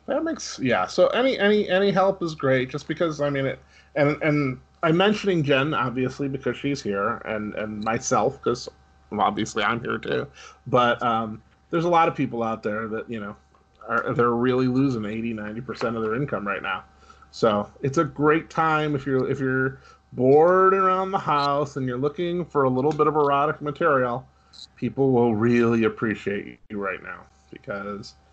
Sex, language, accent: male, English, American